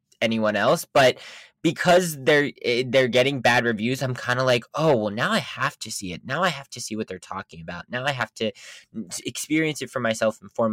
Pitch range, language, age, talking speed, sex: 115-155 Hz, English, 20-39, 225 wpm, male